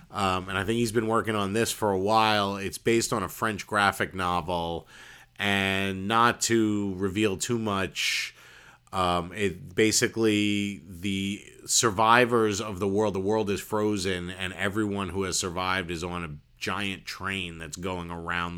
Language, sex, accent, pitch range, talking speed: English, male, American, 95-110 Hz, 160 wpm